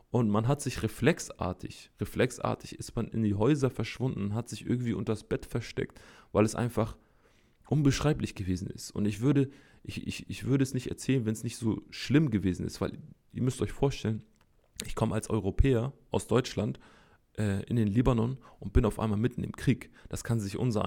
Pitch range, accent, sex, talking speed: 105-125 Hz, German, male, 185 wpm